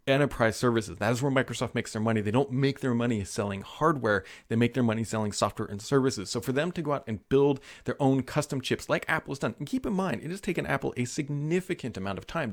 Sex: male